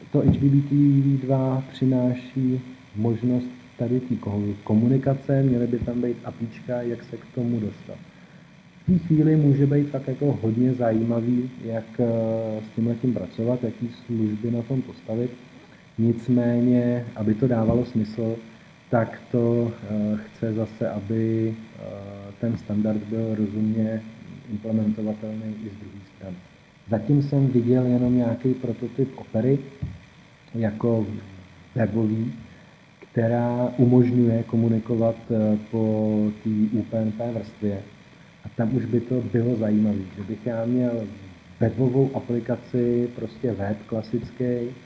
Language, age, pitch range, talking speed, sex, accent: Czech, 40-59, 110-125 Hz, 115 wpm, male, native